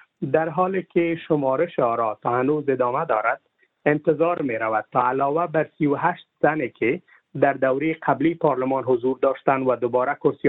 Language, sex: Persian, male